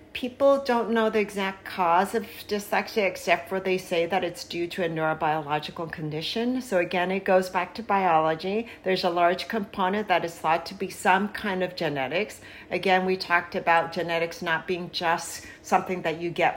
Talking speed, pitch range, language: 185 wpm, 170-205 Hz, English